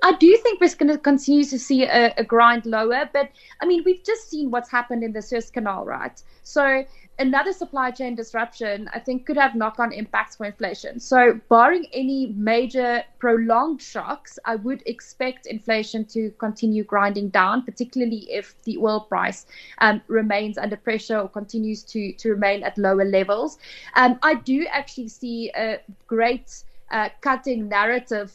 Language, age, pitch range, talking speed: English, 20-39, 210-250 Hz, 170 wpm